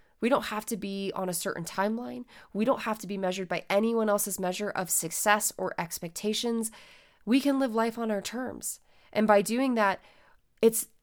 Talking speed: 190 wpm